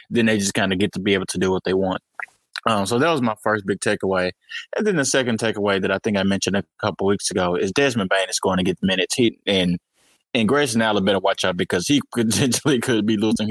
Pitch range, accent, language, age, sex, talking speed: 95-110 Hz, American, English, 20-39, male, 270 wpm